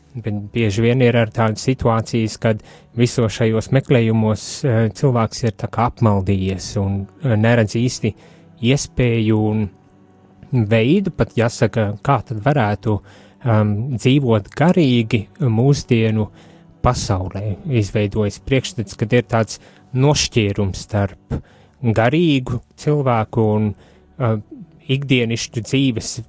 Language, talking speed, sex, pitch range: English, 95 wpm, male, 105-130 Hz